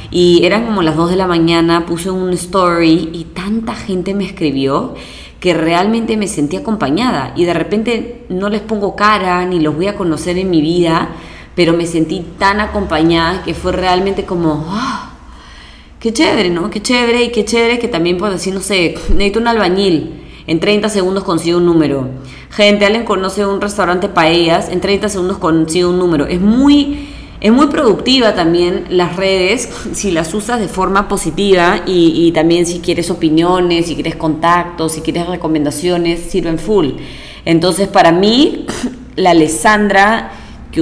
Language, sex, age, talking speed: English, female, 20-39, 170 wpm